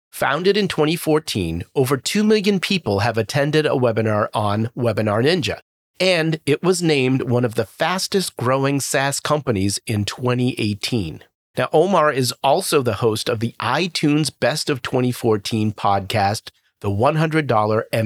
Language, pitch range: English, 115-155 Hz